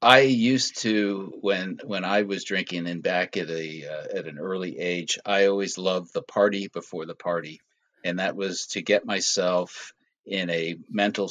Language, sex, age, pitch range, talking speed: English, male, 50-69, 85-100 Hz, 180 wpm